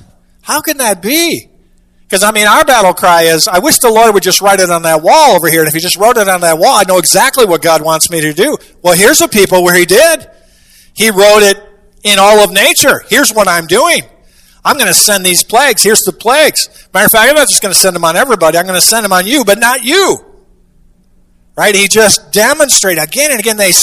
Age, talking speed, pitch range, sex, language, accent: 50-69, 250 wpm, 165-220 Hz, male, English, American